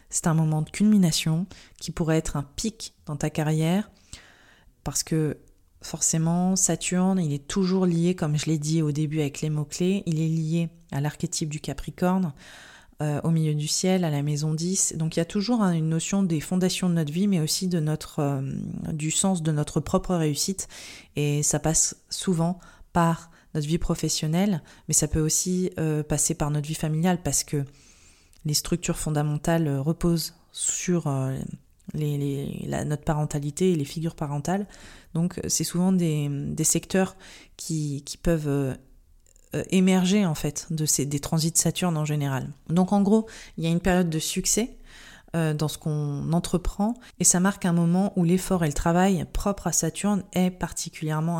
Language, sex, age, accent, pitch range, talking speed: French, female, 20-39, French, 150-180 Hz, 180 wpm